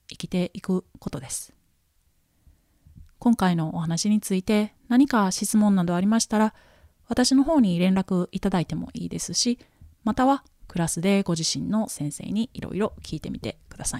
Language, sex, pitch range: Japanese, female, 155-205 Hz